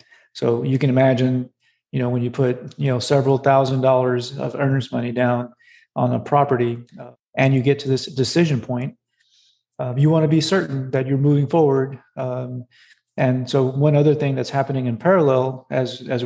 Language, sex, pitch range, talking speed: English, male, 125-140 Hz, 190 wpm